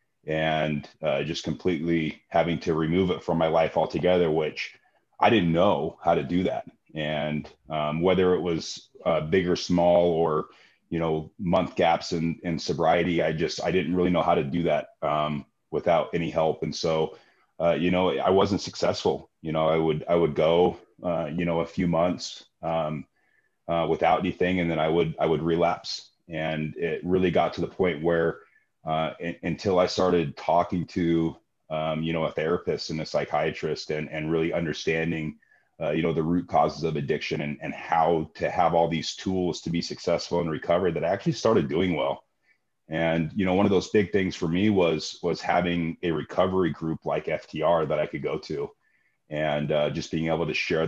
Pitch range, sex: 80-85 Hz, male